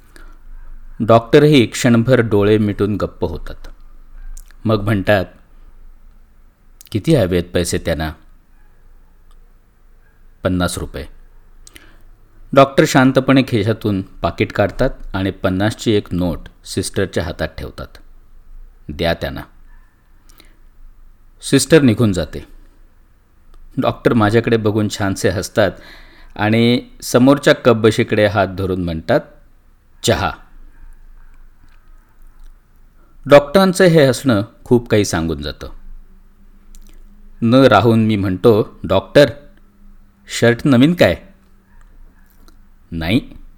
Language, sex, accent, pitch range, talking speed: Marathi, male, native, 90-120 Hz, 80 wpm